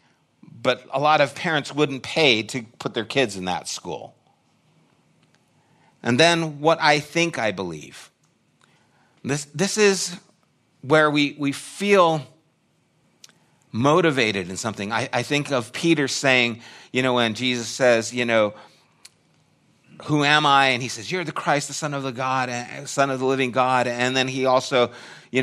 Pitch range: 105-140 Hz